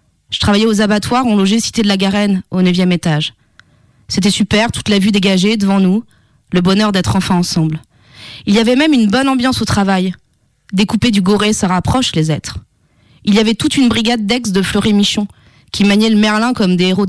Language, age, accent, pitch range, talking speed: French, 20-39, French, 195-245 Hz, 205 wpm